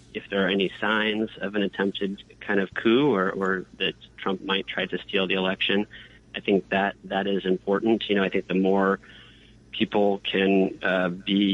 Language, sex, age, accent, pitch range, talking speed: English, male, 30-49, American, 95-105 Hz, 190 wpm